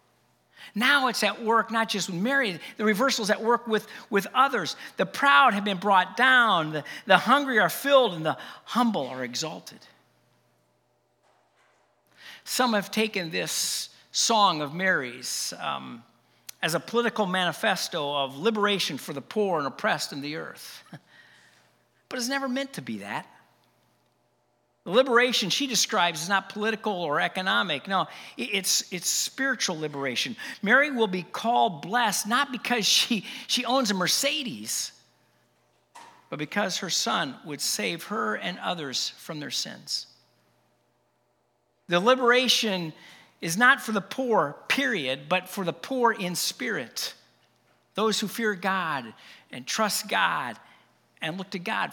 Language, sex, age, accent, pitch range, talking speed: English, male, 50-69, American, 185-245 Hz, 140 wpm